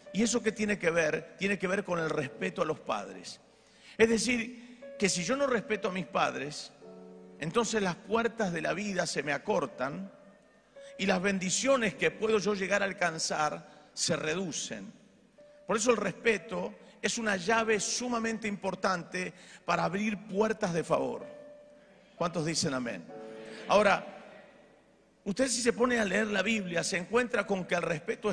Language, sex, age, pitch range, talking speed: Spanish, male, 50-69, 185-235 Hz, 165 wpm